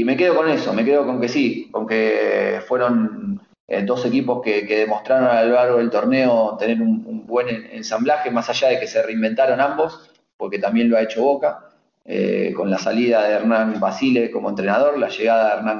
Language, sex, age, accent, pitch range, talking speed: Spanish, male, 30-49, Argentinian, 110-150 Hz, 210 wpm